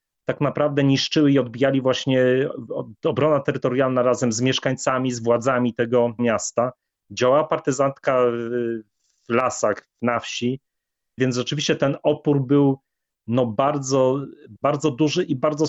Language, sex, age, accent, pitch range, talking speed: Polish, male, 30-49, native, 110-135 Hz, 120 wpm